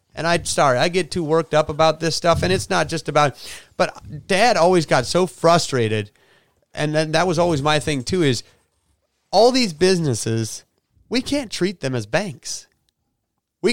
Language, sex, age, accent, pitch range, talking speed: English, male, 30-49, American, 120-160 Hz, 180 wpm